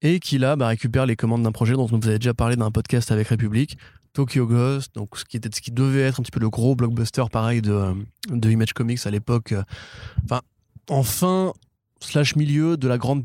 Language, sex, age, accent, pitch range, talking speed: French, male, 20-39, French, 110-130 Hz, 220 wpm